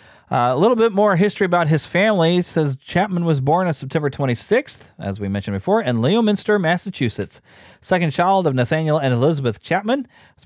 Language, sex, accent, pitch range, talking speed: English, male, American, 125-170 Hz, 180 wpm